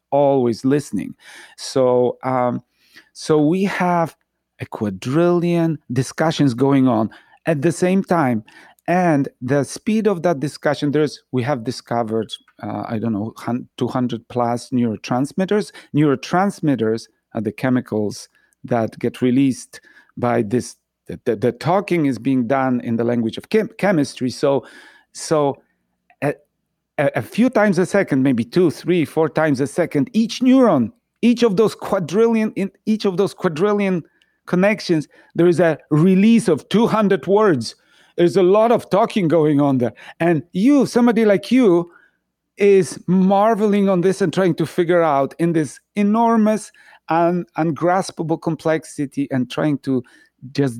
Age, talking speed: 40-59, 145 wpm